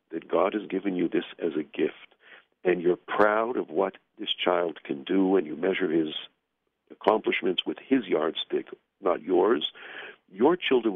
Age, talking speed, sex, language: 60-79, 165 wpm, male, English